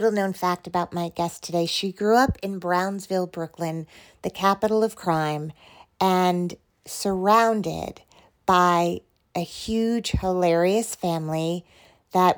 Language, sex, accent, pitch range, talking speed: English, female, American, 175-205 Hz, 115 wpm